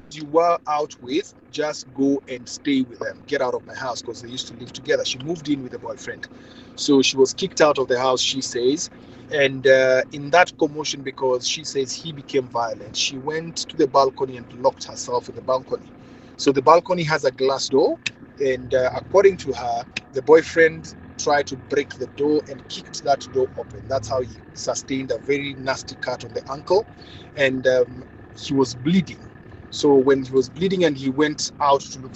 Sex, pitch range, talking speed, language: male, 125-160 Hz, 205 wpm, English